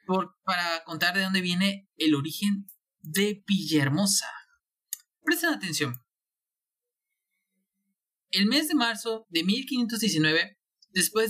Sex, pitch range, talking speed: male, 165-220 Hz, 95 wpm